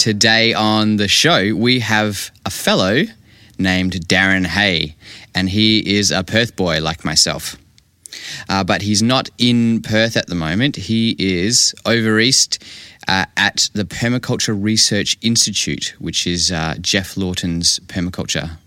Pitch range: 90-110 Hz